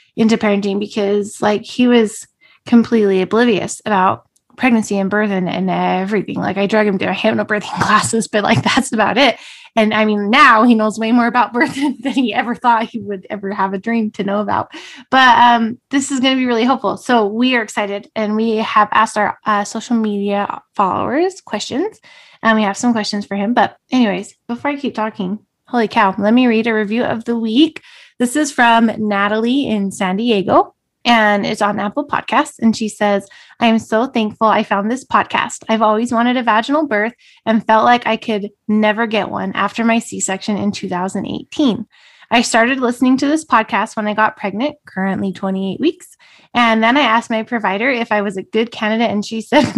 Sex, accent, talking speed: female, American, 200 wpm